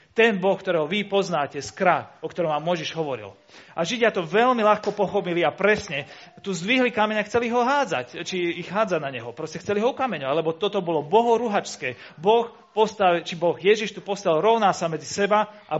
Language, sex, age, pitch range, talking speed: Slovak, male, 40-59, 165-220 Hz, 195 wpm